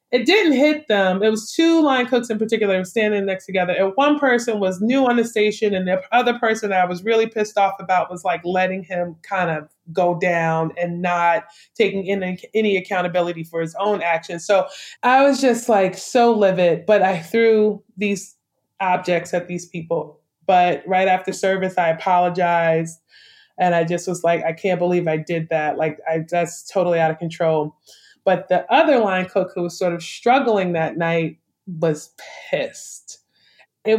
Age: 20-39